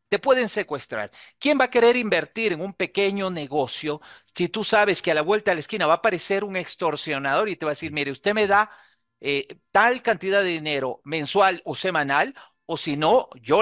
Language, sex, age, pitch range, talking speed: Spanish, male, 40-59, 140-195 Hz, 210 wpm